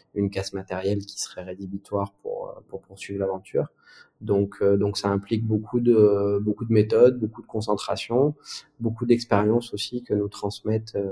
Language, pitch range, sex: French, 95-110 Hz, male